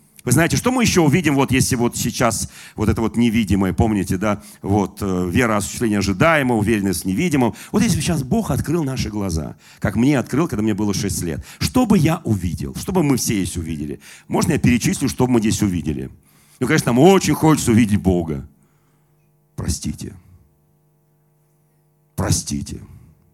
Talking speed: 160 wpm